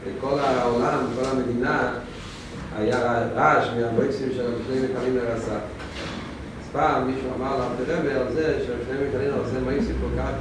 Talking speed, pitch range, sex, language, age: 115 wpm, 100-130 Hz, male, Hebrew, 40-59